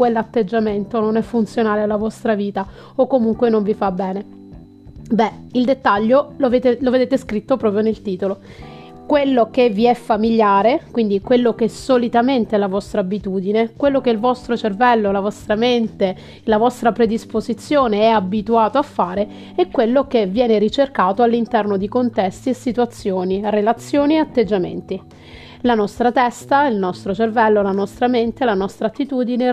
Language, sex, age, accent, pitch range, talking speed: Italian, female, 30-49, native, 210-250 Hz, 160 wpm